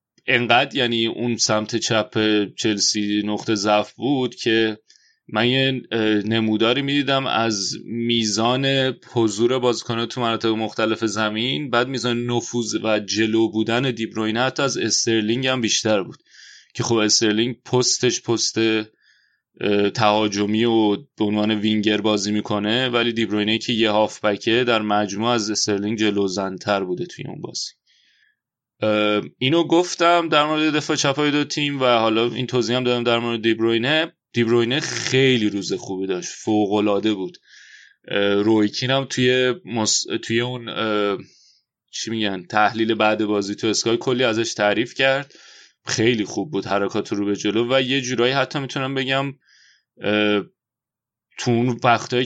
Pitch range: 105-125 Hz